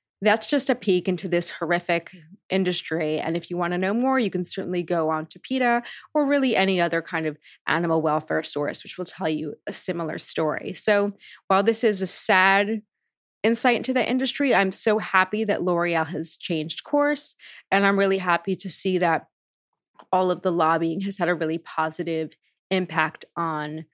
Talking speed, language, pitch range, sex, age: 185 wpm, English, 165-215 Hz, female, 20-39